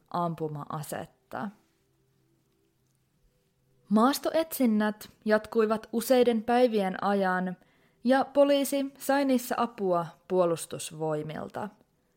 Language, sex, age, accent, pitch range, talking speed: Finnish, female, 20-39, native, 180-250 Hz, 60 wpm